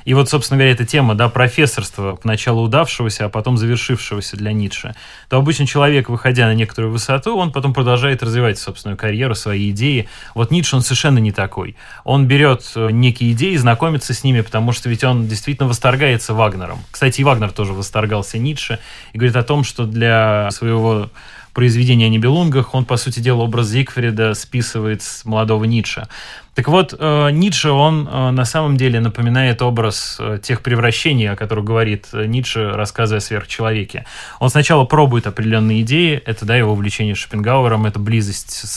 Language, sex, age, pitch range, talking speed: Russian, male, 20-39, 110-135 Hz, 165 wpm